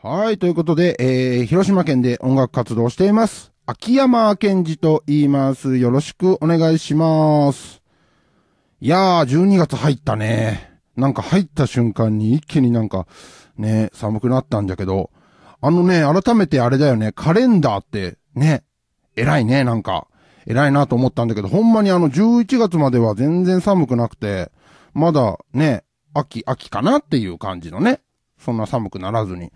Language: Japanese